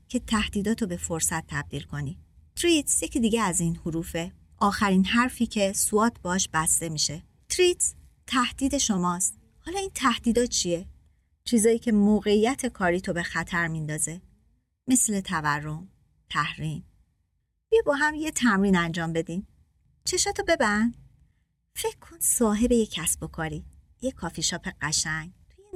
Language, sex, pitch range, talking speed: Persian, male, 165-245 Hz, 135 wpm